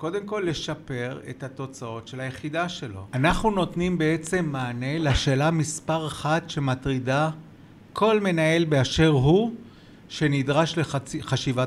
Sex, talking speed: male, 115 wpm